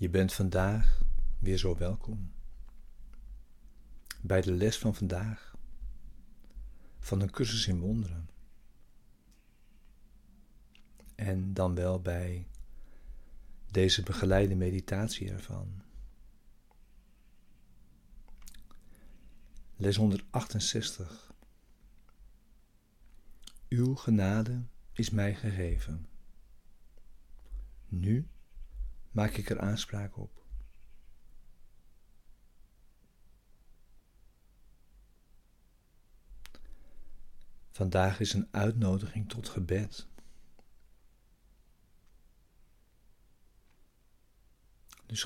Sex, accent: male, Dutch